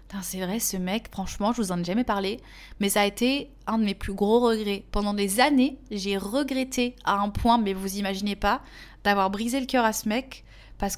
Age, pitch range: 20-39, 195-235 Hz